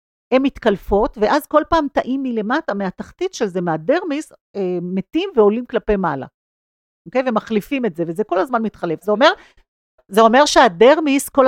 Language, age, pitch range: Hebrew, 50-69, 185-265 Hz